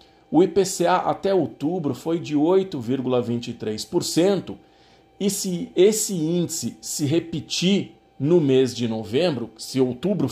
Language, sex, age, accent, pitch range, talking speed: Portuguese, male, 50-69, Brazilian, 130-180 Hz, 110 wpm